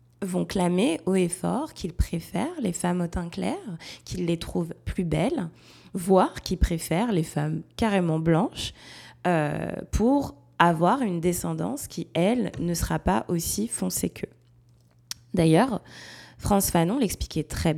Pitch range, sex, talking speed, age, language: 120-195 Hz, female, 140 wpm, 20-39, French